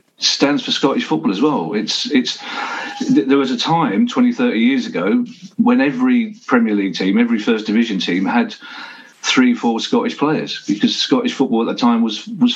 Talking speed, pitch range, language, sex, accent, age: 180 wpm, 155-255 Hz, English, male, British, 40-59